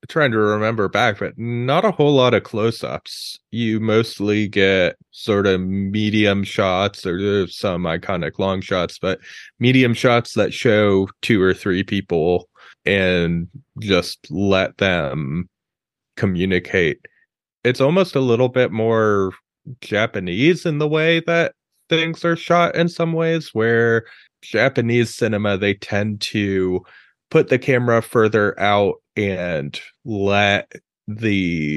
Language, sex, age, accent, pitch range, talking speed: English, male, 20-39, American, 95-120 Hz, 130 wpm